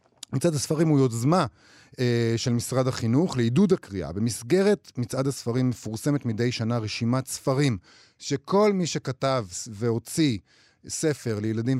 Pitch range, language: 115-165 Hz, Hebrew